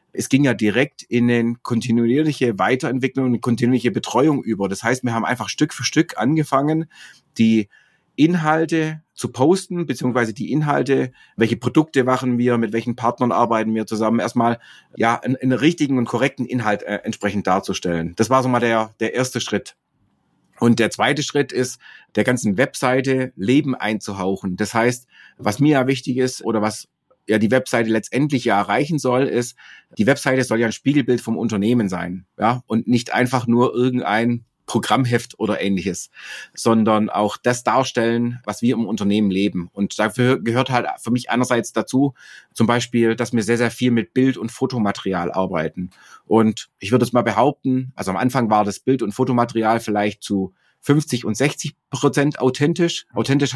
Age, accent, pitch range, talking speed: 30-49, German, 110-135 Hz, 170 wpm